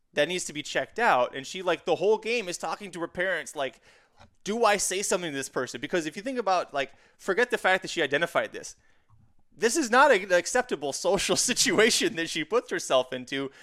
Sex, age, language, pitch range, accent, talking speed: male, 20-39, English, 135-200 Hz, American, 220 wpm